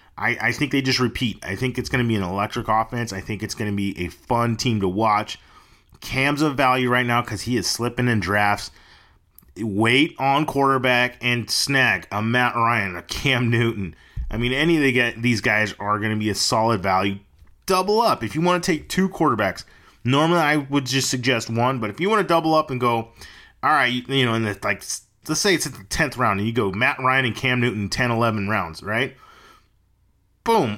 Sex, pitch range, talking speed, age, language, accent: male, 110-140 Hz, 220 wpm, 30-49, English, American